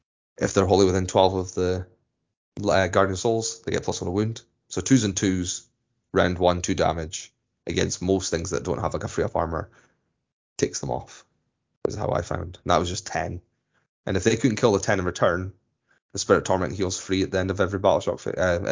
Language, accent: English, British